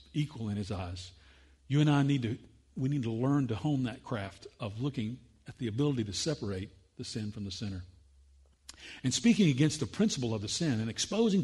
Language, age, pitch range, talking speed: English, 50-69, 90-140 Hz, 205 wpm